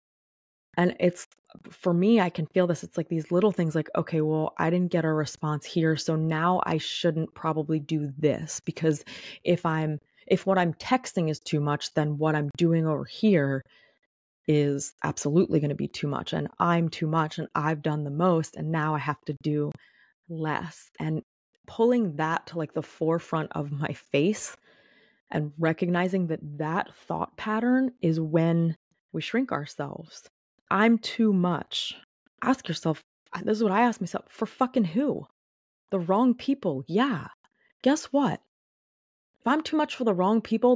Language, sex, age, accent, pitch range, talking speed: English, female, 20-39, American, 155-220 Hz, 170 wpm